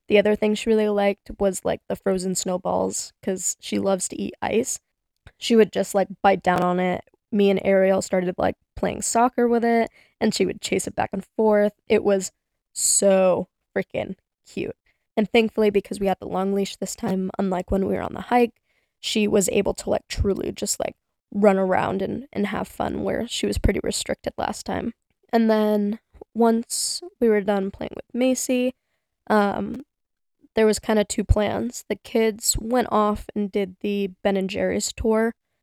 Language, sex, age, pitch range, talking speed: English, female, 10-29, 195-225 Hz, 190 wpm